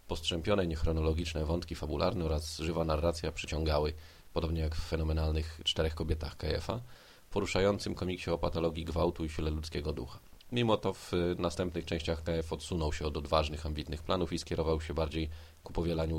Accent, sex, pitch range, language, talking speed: native, male, 80-90 Hz, Polish, 155 wpm